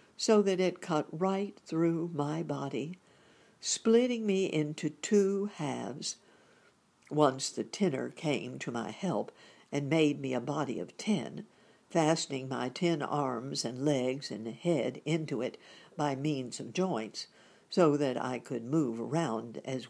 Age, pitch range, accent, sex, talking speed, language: 60-79, 150-200 Hz, American, female, 145 wpm, English